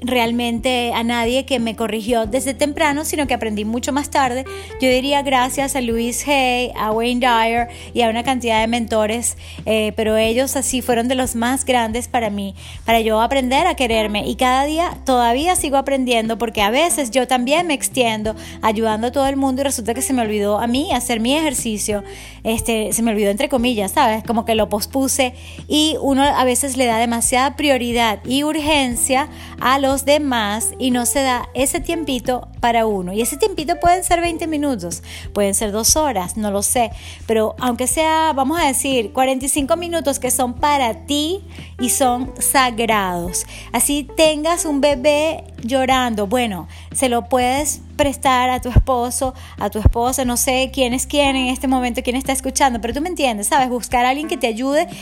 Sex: female